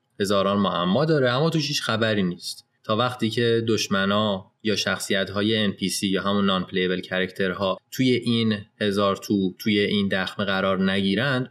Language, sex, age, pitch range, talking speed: Persian, male, 20-39, 100-125 Hz, 155 wpm